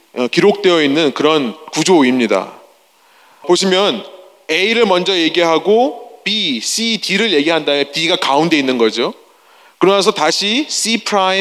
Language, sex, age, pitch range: Korean, male, 30-49, 180-245 Hz